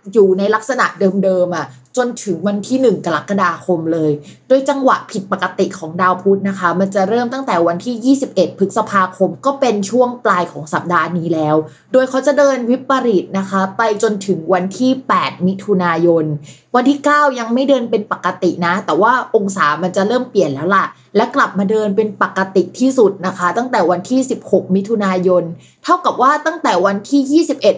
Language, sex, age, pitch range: Thai, female, 20-39, 180-245 Hz